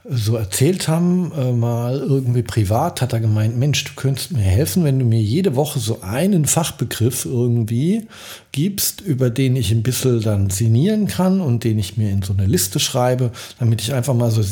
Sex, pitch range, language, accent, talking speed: male, 105-135 Hz, German, German, 195 wpm